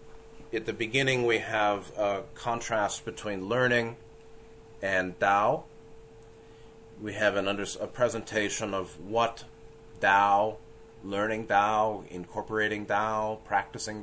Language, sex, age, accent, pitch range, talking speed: English, male, 30-49, American, 95-120 Hz, 100 wpm